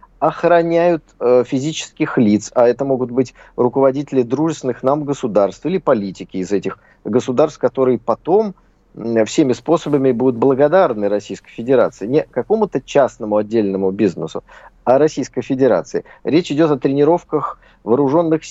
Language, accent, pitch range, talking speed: Russian, native, 115-150 Hz, 125 wpm